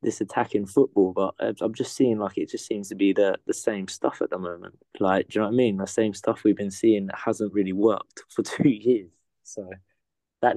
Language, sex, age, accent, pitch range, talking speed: English, male, 20-39, British, 100-115 Hz, 240 wpm